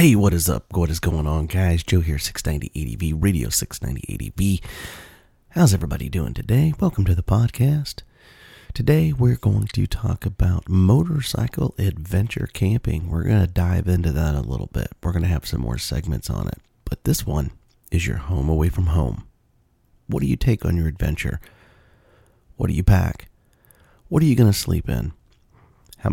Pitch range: 85-110 Hz